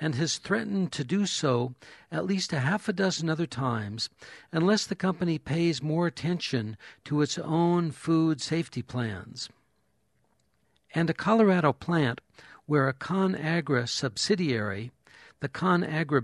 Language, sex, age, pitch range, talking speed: English, male, 60-79, 130-175 Hz, 135 wpm